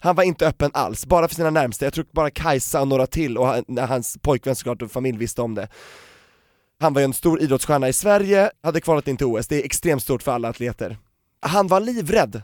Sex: male